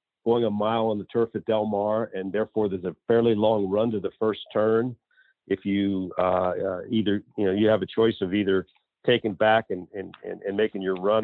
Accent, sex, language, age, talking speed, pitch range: American, male, English, 50-69, 225 wpm, 95-110 Hz